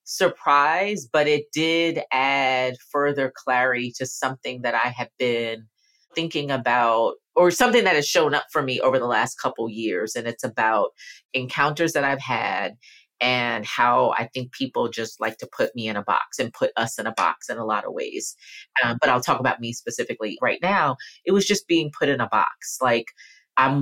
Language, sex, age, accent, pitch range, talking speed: English, female, 30-49, American, 115-150 Hz, 195 wpm